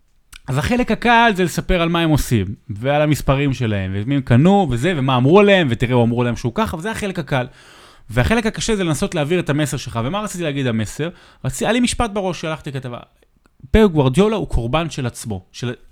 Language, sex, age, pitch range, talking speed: Hebrew, male, 30-49, 110-165 Hz, 190 wpm